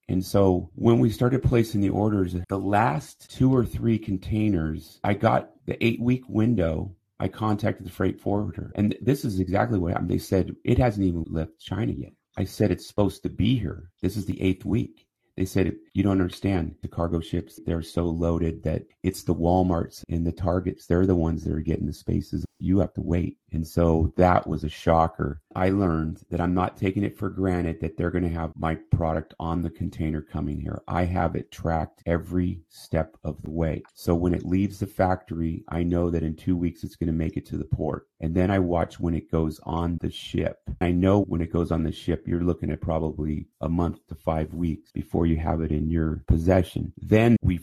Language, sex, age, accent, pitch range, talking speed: English, male, 30-49, American, 80-100 Hz, 215 wpm